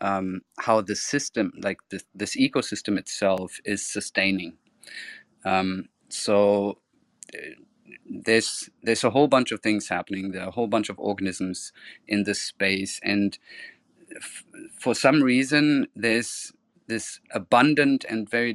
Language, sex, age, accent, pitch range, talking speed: English, male, 30-49, German, 100-110 Hz, 135 wpm